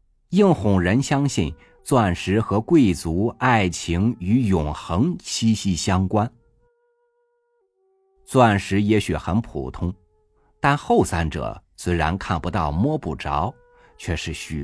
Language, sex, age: Chinese, male, 50-69